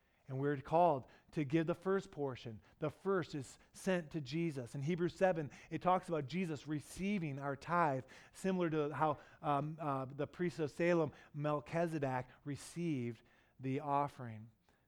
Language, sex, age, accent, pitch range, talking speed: English, male, 40-59, American, 135-175 Hz, 150 wpm